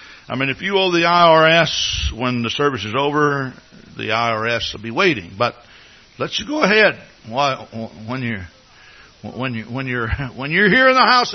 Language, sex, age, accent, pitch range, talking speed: English, male, 60-79, American, 110-160 Hz, 175 wpm